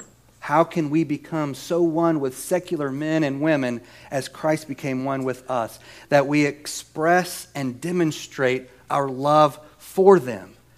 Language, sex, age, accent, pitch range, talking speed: English, male, 40-59, American, 120-150 Hz, 145 wpm